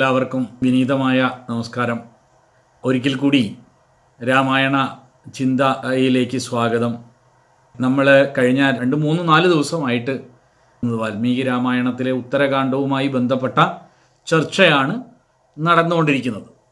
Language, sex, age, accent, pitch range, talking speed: Malayalam, male, 40-59, native, 125-150 Hz, 70 wpm